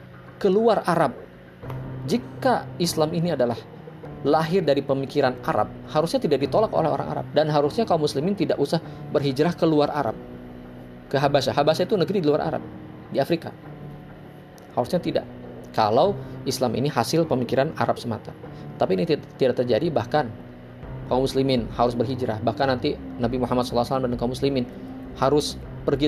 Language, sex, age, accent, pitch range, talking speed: Indonesian, male, 20-39, native, 110-135 Hz, 145 wpm